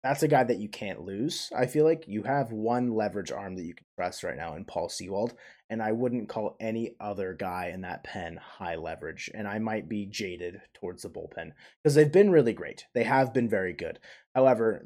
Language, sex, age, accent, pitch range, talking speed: English, male, 20-39, American, 100-125 Hz, 220 wpm